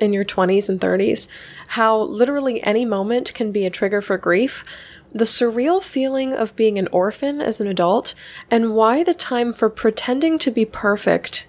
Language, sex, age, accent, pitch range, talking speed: English, female, 10-29, American, 200-240 Hz, 180 wpm